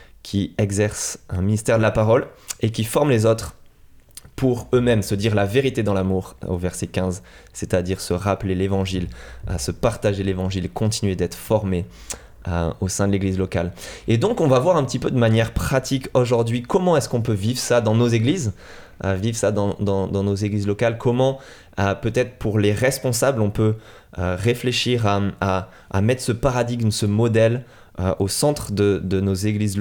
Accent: French